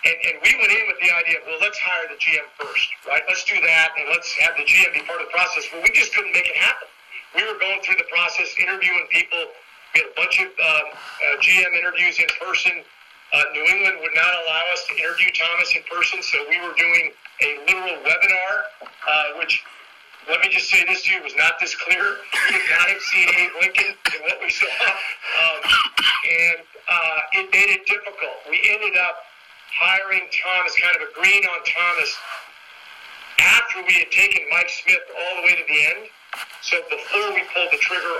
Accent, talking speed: American, 205 wpm